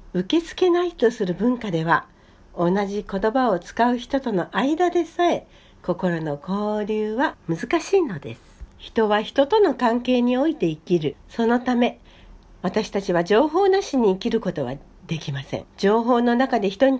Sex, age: female, 60-79